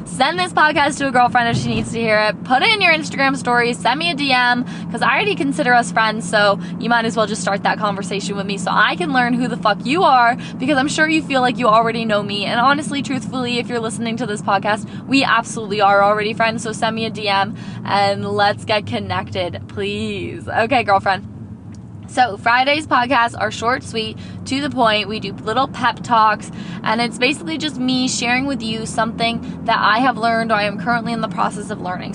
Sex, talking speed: female, 225 wpm